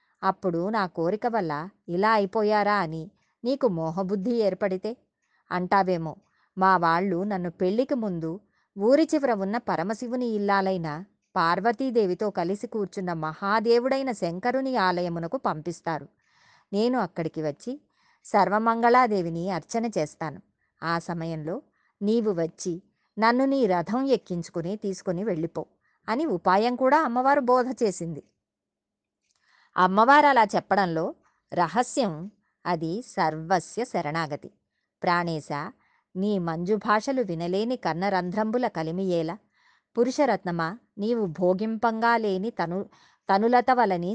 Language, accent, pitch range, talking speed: Telugu, native, 175-230 Hz, 95 wpm